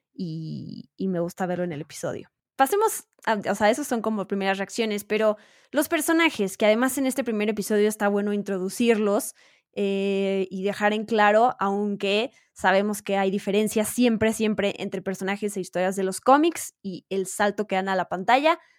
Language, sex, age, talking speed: Spanish, female, 10-29, 180 wpm